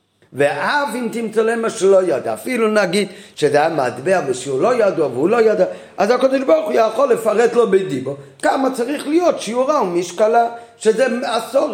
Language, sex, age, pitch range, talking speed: Hebrew, male, 50-69, 155-230 Hz, 170 wpm